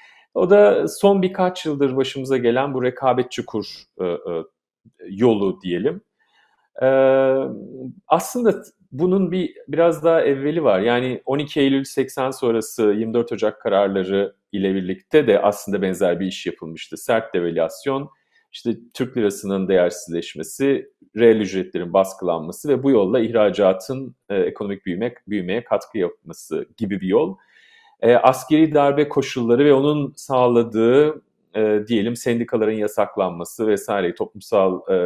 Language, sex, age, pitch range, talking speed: Turkish, male, 40-59, 105-150 Hz, 120 wpm